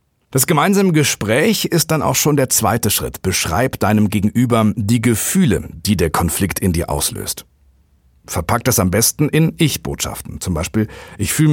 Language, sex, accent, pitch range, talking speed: German, male, German, 100-135 Hz, 160 wpm